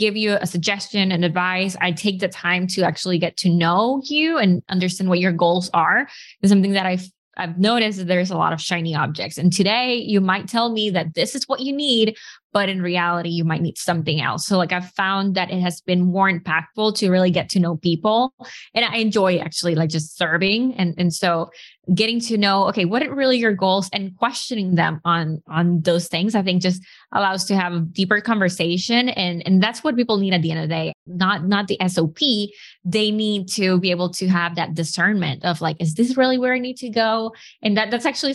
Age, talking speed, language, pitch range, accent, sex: 20-39, 225 wpm, English, 175-215 Hz, American, female